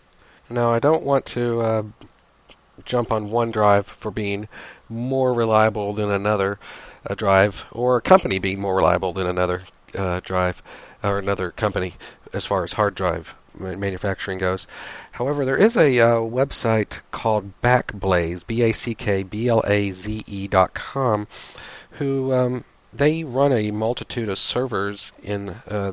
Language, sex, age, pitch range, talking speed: English, male, 40-59, 95-120 Hz, 135 wpm